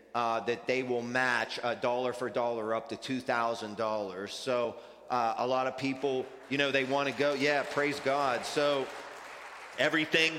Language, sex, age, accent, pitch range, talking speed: English, male, 30-49, American, 115-145 Hz, 170 wpm